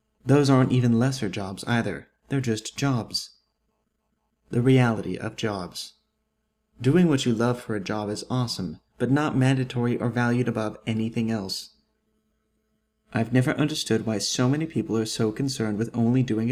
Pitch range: 110-135 Hz